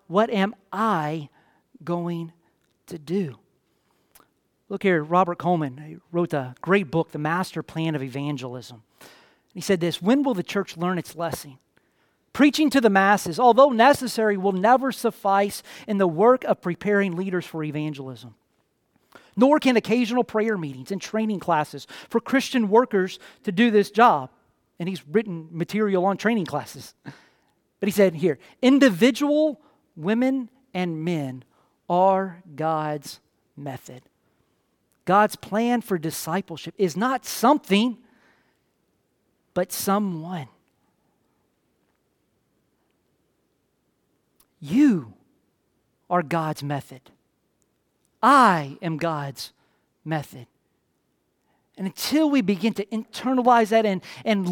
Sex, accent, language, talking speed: male, American, English, 115 wpm